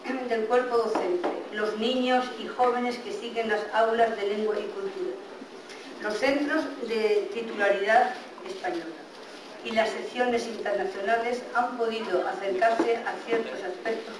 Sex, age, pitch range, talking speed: female, 40-59, 210-245 Hz, 125 wpm